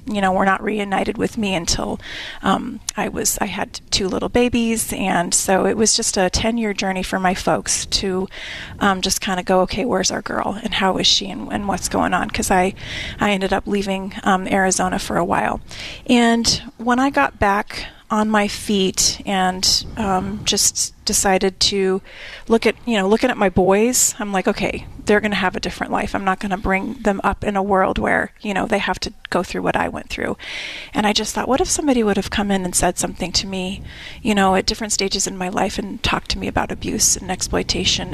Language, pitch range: English, 190-220 Hz